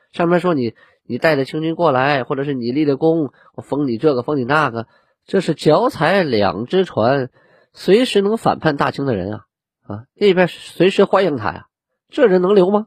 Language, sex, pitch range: Chinese, male, 115-160 Hz